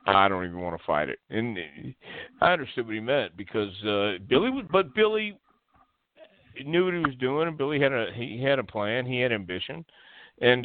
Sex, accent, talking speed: male, American, 205 wpm